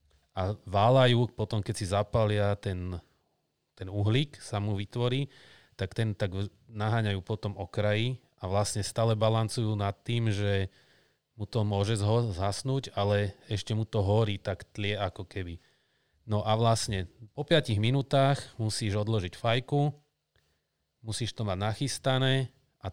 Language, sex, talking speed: Slovak, male, 135 wpm